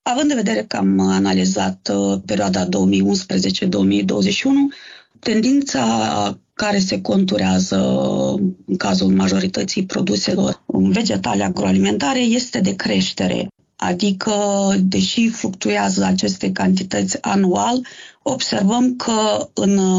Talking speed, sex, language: 90 wpm, female, Romanian